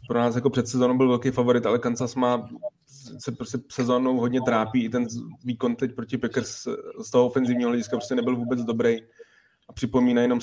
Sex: male